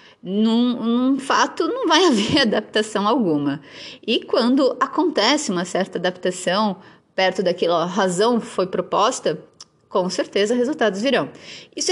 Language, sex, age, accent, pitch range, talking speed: Portuguese, female, 20-39, Brazilian, 185-260 Hz, 120 wpm